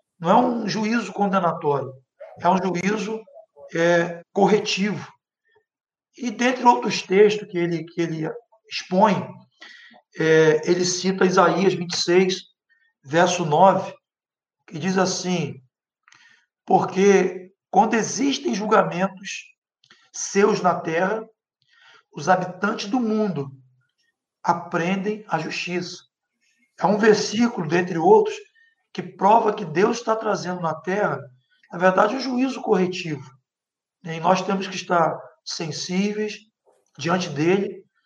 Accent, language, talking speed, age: Brazilian, Portuguese, 105 wpm, 60-79